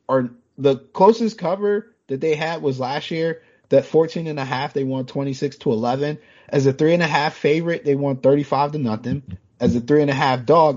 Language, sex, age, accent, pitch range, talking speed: English, male, 30-49, American, 120-160 Hz, 215 wpm